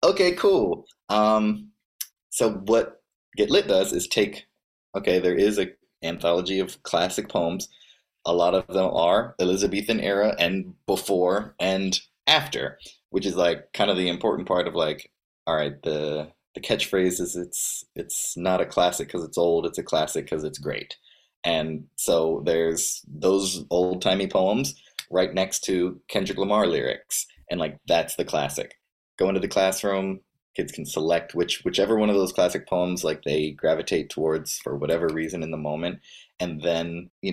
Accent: American